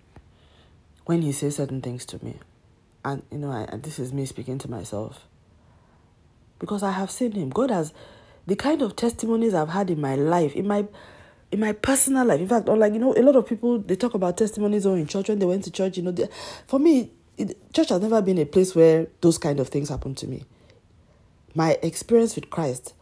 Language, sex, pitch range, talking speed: English, female, 130-200 Hz, 225 wpm